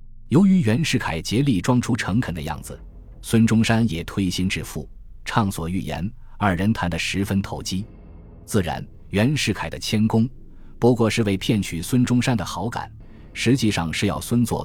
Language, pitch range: Chinese, 90-115 Hz